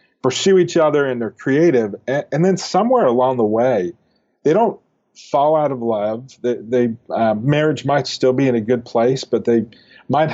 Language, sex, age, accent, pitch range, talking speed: English, male, 40-59, American, 115-130 Hz, 180 wpm